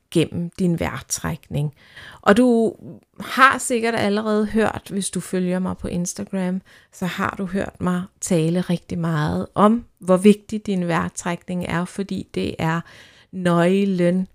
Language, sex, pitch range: Danish, female, 165-215 Hz